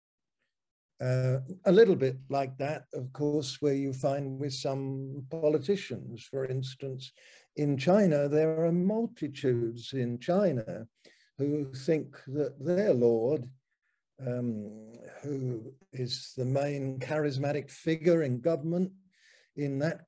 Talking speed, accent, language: 115 wpm, British, English